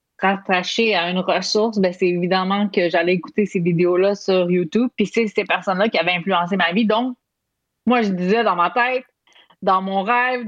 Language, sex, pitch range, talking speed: French, female, 185-230 Hz, 190 wpm